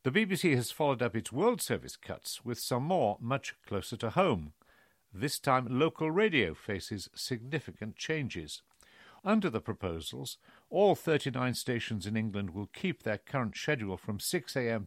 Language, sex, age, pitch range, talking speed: English, male, 50-69, 110-145 Hz, 155 wpm